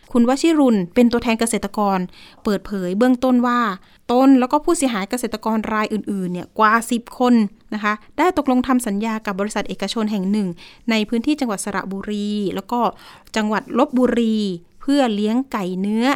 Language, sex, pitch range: Thai, female, 210-270 Hz